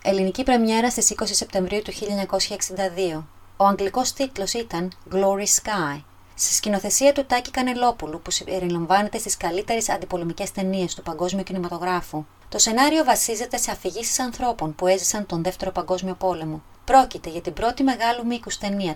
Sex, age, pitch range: female, 30-49, 180-220 Hz